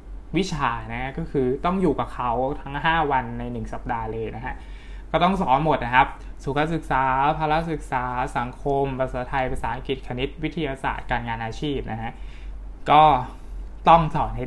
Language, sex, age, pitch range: Thai, male, 20-39, 120-150 Hz